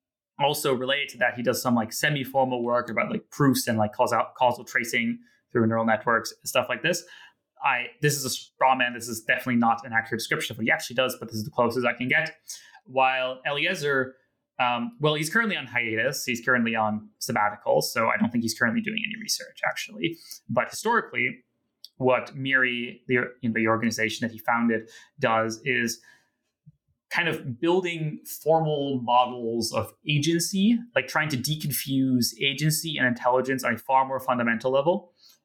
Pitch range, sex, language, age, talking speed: 120-140 Hz, male, English, 20-39, 180 wpm